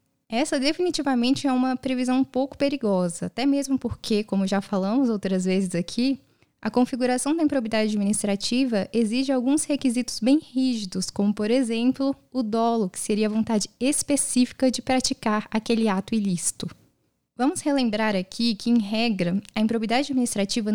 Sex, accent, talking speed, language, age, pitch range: female, Brazilian, 150 wpm, Portuguese, 10-29, 215-270 Hz